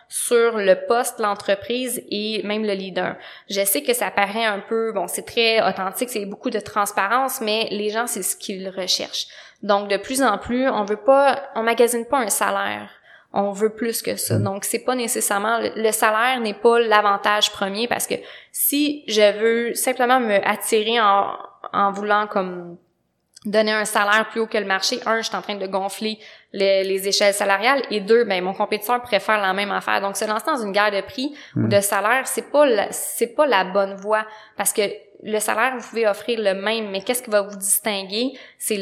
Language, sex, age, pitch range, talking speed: French, female, 20-39, 200-235 Hz, 205 wpm